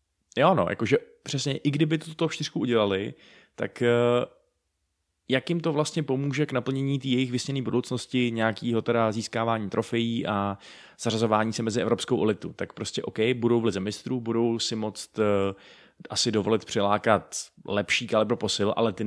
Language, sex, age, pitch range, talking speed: Czech, male, 20-39, 100-125 Hz, 150 wpm